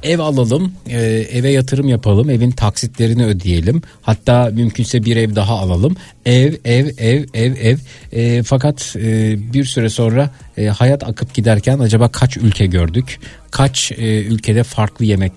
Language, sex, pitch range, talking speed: Turkish, male, 105-130 Hz, 150 wpm